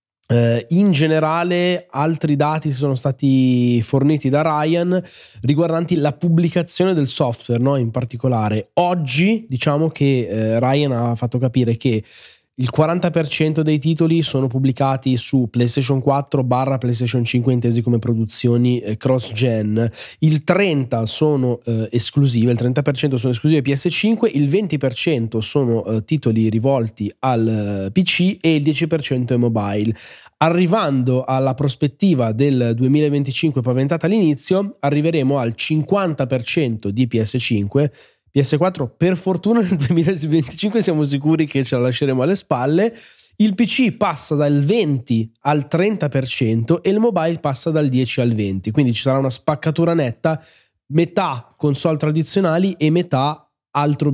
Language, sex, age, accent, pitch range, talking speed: Italian, male, 20-39, native, 125-165 Hz, 125 wpm